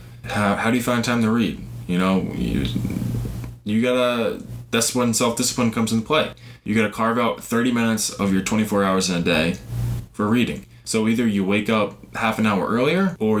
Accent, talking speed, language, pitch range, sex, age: American, 200 wpm, English, 95-120 Hz, male, 20-39